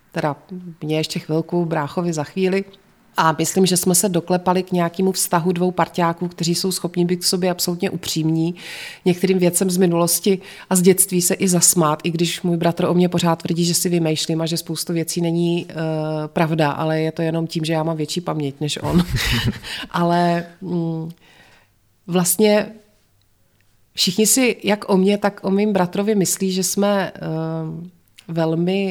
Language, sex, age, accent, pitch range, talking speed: Czech, female, 30-49, native, 165-195 Hz, 165 wpm